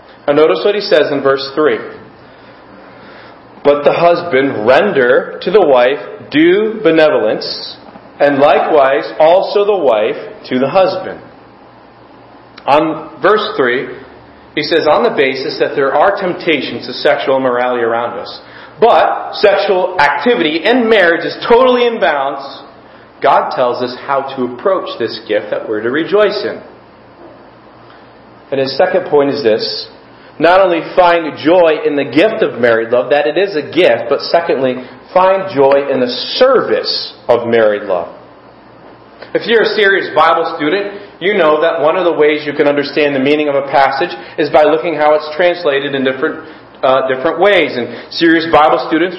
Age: 40-59